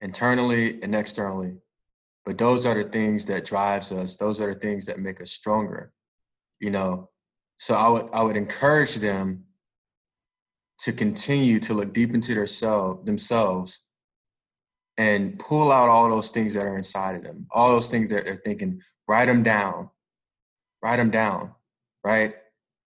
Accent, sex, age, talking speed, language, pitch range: American, male, 20-39, 160 wpm, English, 105-120 Hz